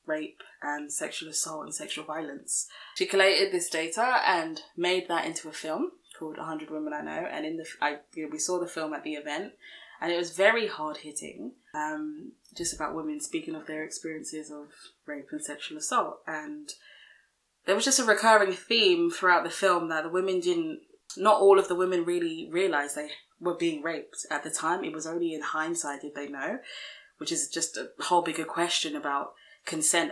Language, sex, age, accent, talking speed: English, female, 20-39, British, 195 wpm